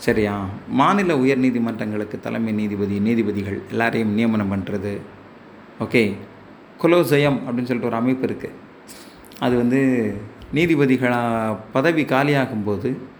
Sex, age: male, 30-49